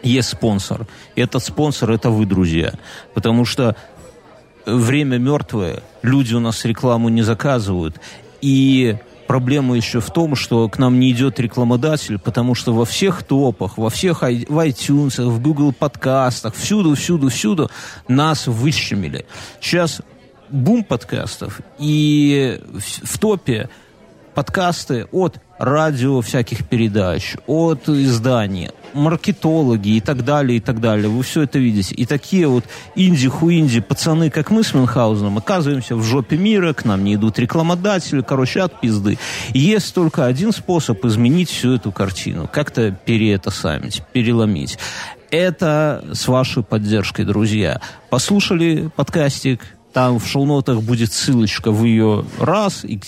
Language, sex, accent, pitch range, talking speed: Russian, male, native, 115-155 Hz, 130 wpm